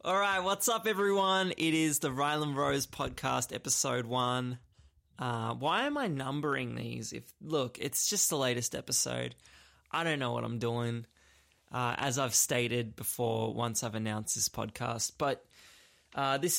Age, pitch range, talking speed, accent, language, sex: 20-39, 125-165 Hz, 160 wpm, Australian, English, male